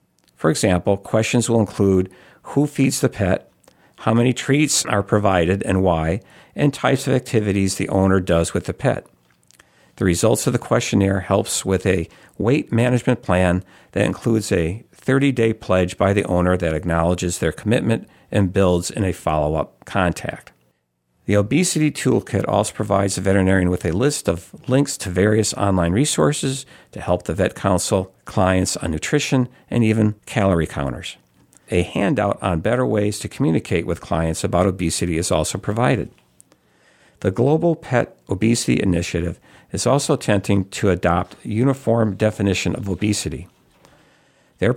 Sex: male